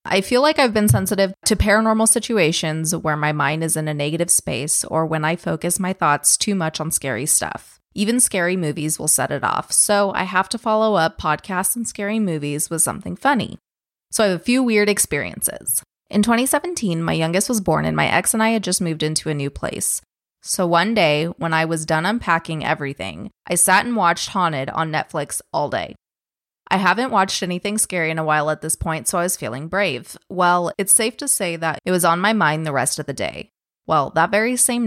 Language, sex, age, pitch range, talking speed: English, female, 20-39, 155-205 Hz, 220 wpm